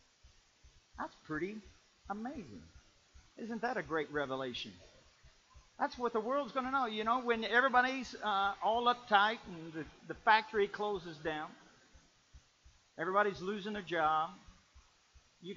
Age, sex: 50-69, male